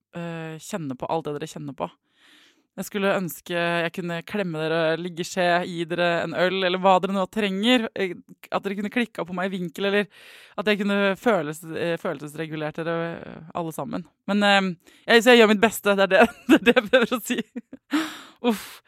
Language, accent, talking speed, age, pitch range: English, Swedish, 190 wpm, 20-39, 170-220 Hz